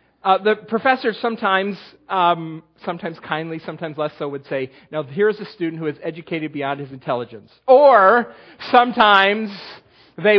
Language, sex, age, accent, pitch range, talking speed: English, male, 40-59, American, 145-195 Hz, 145 wpm